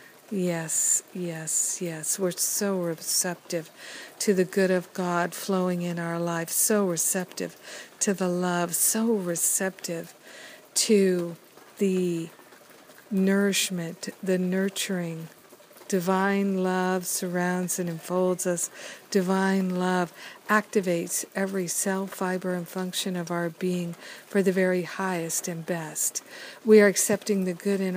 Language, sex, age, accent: English, female, 50-69, American